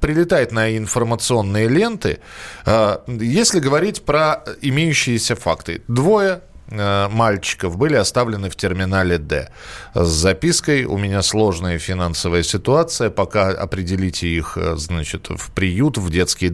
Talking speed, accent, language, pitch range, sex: 115 wpm, native, Russian, 95-140 Hz, male